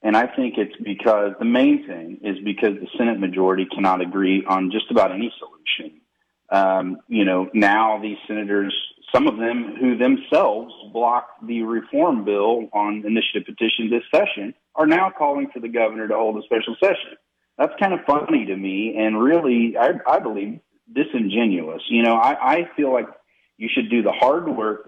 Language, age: English, 40-59